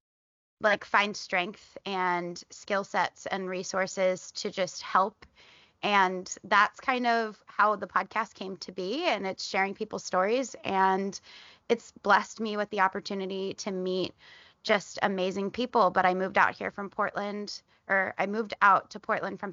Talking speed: 160 wpm